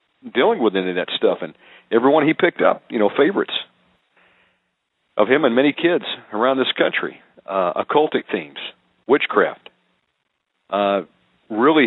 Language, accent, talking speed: English, American, 140 wpm